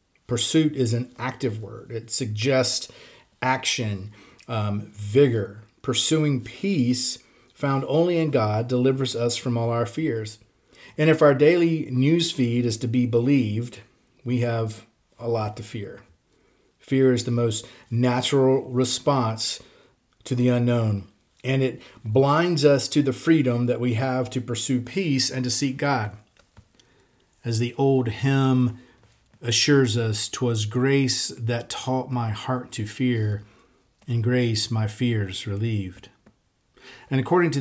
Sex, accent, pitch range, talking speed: male, American, 115-135 Hz, 140 wpm